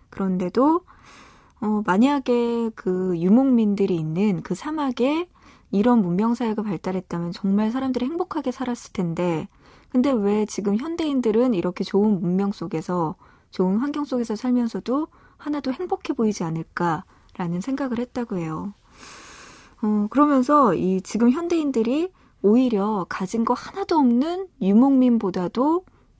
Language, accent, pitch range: Korean, native, 185-255 Hz